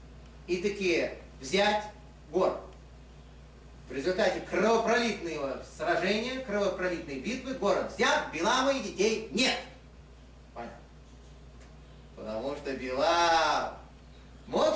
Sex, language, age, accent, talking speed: male, Russian, 30-49, native, 85 wpm